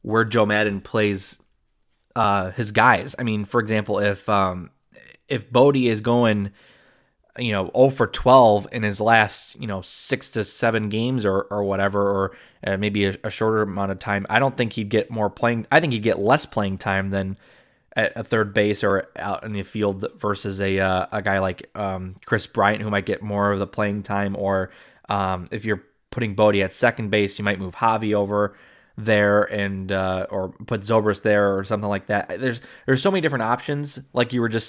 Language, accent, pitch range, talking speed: English, American, 100-125 Hz, 205 wpm